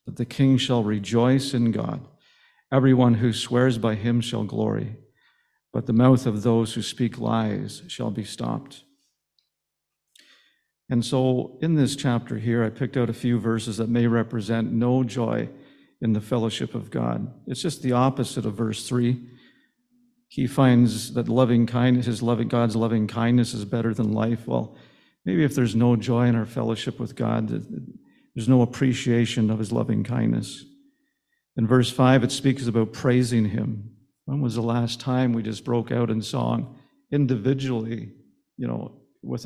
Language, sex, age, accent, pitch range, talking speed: English, male, 50-69, American, 115-130 Hz, 165 wpm